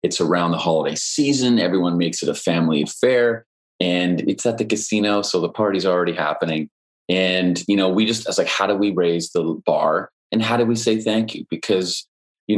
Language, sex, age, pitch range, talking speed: English, male, 30-49, 85-105 Hz, 205 wpm